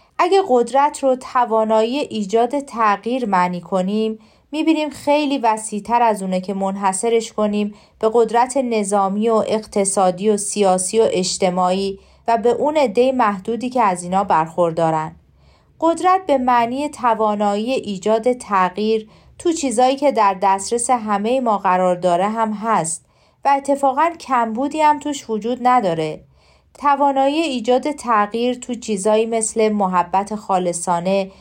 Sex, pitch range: female, 200-255 Hz